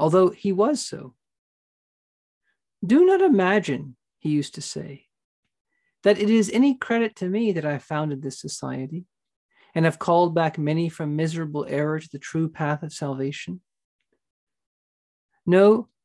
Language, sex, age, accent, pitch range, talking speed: English, male, 40-59, American, 150-195 Hz, 140 wpm